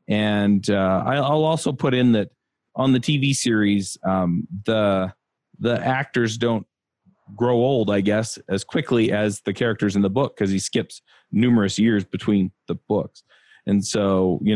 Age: 30-49